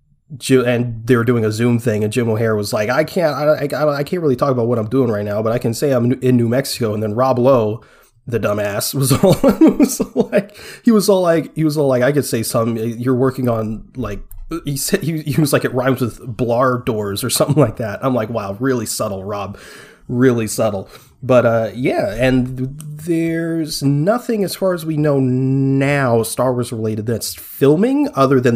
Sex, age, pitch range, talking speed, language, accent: male, 30-49, 110-145 Hz, 220 wpm, English, American